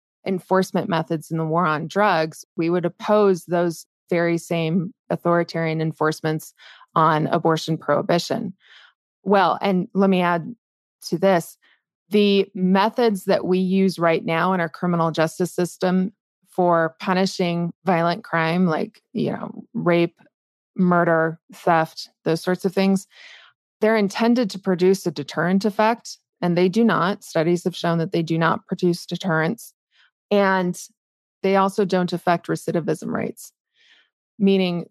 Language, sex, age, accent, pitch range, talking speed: English, female, 20-39, American, 170-195 Hz, 135 wpm